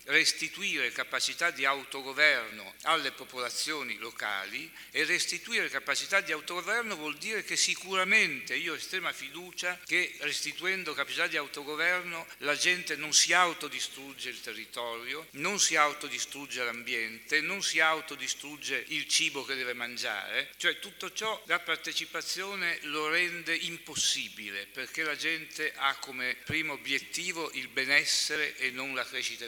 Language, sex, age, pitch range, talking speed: Italian, male, 60-79, 125-160 Hz, 130 wpm